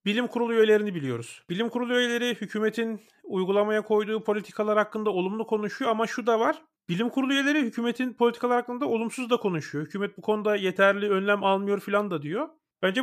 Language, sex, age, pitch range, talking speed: Turkish, male, 40-59, 175-230 Hz, 170 wpm